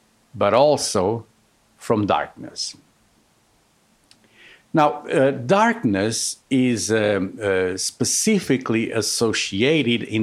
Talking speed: 75 wpm